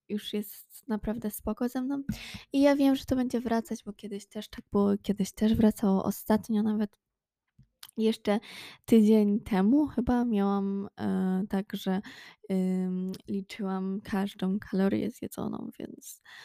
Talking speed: 130 wpm